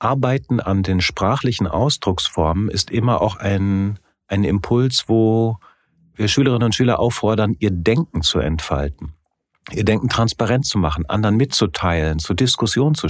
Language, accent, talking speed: German, German, 140 wpm